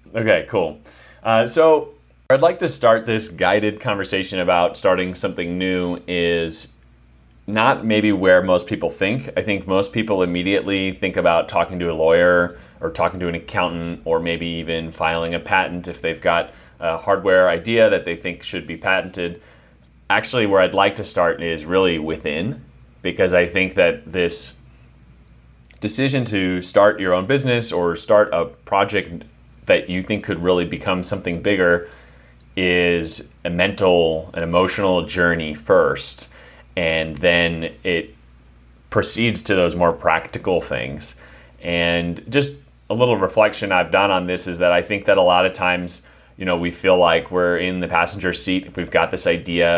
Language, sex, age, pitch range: English, male, 30-49, 80-95 Hz